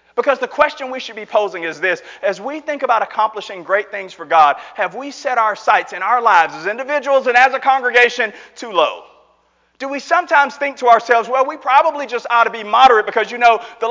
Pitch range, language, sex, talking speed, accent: 195-260 Hz, English, male, 225 wpm, American